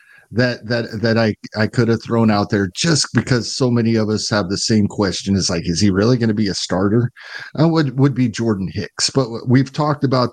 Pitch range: 110-140 Hz